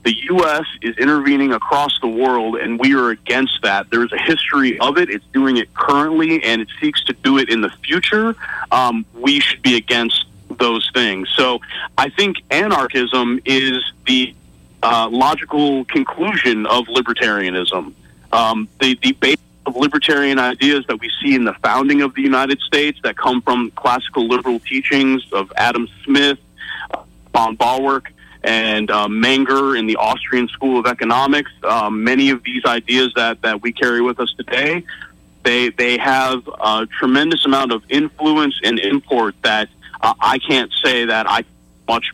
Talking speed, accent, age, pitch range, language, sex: 165 wpm, American, 40-59, 115-140 Hz, English, male